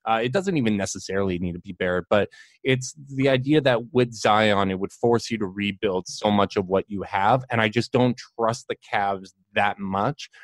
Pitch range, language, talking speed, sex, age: 95-115 Hz, English, 215 wpm, male, 20-39